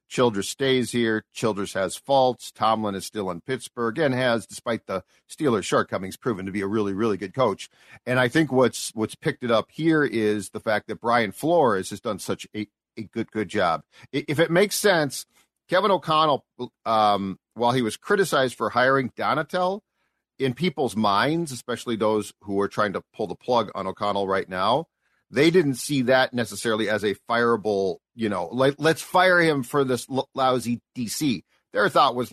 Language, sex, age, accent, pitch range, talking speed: English, male, 50-69, American, 110-150 Hz, 185 wpm